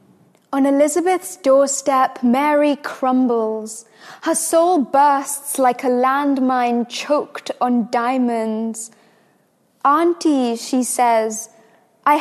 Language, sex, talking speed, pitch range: English, female, 90 wpm, 240-295 Hz